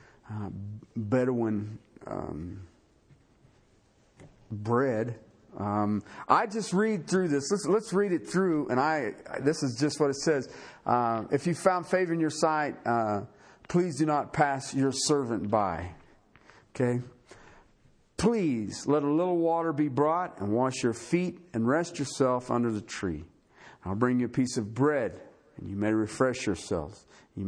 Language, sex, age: English, male, 50-69